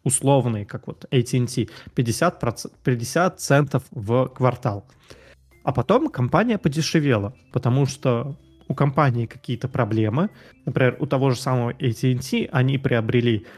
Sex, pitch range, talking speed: male, 115-140 Hz, 120 wpm